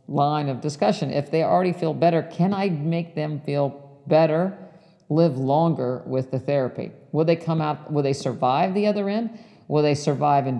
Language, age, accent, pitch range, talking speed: English, 50-69, American, 130-155 Hz, 185 wpm